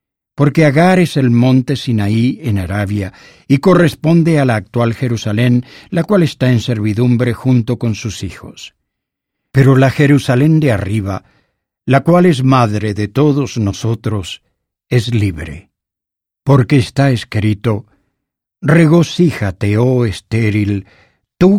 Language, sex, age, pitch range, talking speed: English, male, 60-79, 105-140 Hz, 120 wpm